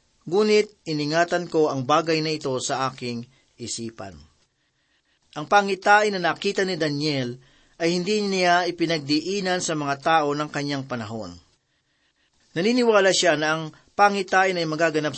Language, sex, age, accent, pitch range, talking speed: Filipino, male, 40-59, native, 140-180 Hz, 130 wpm